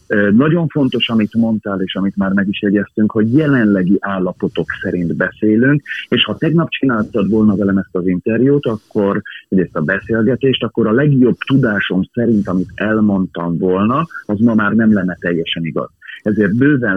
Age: 40-59